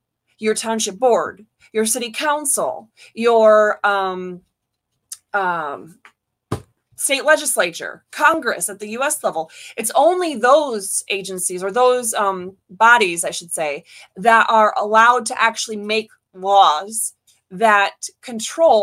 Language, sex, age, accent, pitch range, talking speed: English, female, 30-49, American, 210-305 Hz, 115 wpm